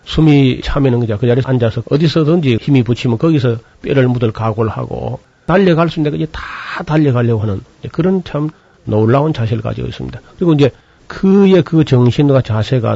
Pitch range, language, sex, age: 115-145 Hz, Korean, male, 40-59